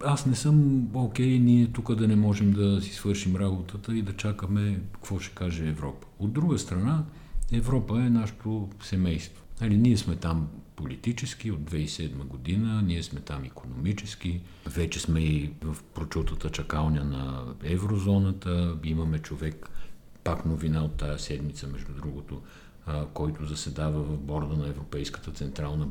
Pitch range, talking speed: 80-110 Hz, 150 wpm